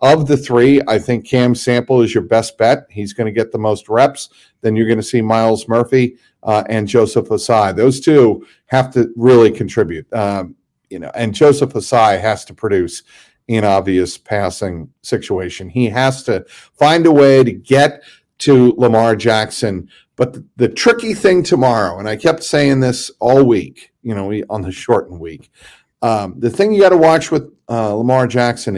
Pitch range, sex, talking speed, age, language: 105-130 Hz, male, 180 wpm, 50-69, English